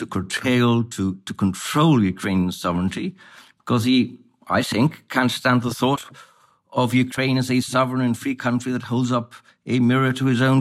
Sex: male